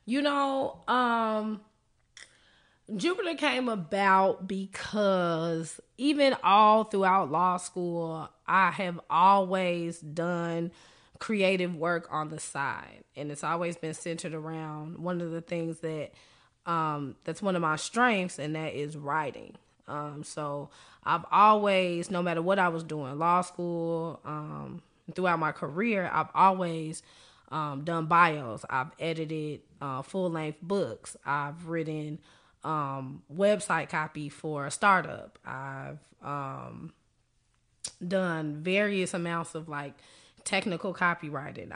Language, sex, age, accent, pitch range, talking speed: English, female, 20-39, American, 155-190 Hz, 120 wpm